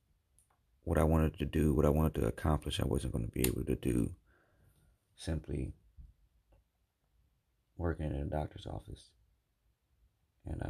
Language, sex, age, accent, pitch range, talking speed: English, male, 30-49, American, 70-90 Hz, 140 wpm